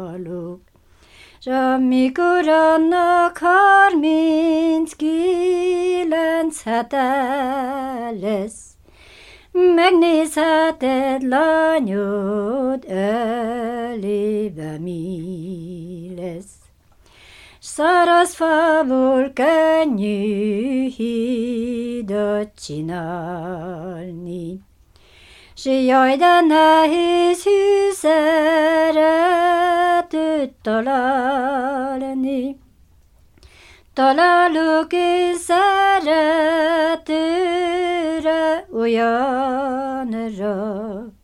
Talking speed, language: 30 wpm, Hungarian